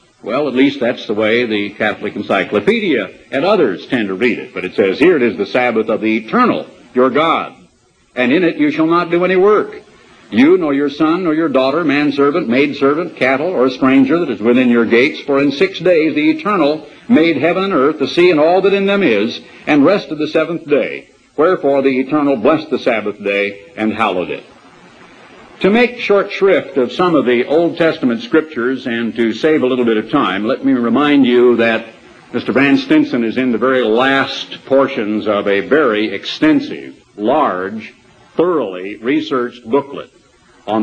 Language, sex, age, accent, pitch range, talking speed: English, male, 60-79, American, 120-160 Hz, 190 wpm